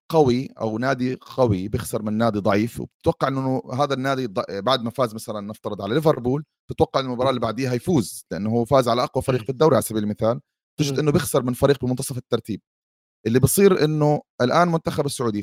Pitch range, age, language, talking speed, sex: 115-150 Hz, 30-49, Arabic, 185 wpm, male